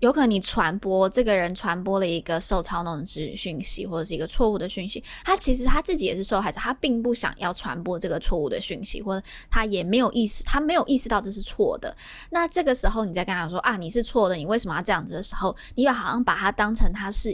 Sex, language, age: female, Chinese, 20-39